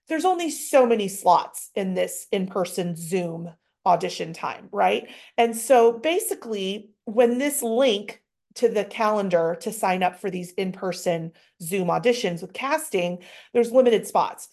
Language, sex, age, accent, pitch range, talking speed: English, female, 30-49, American, 185-235 Hz, 140 wpm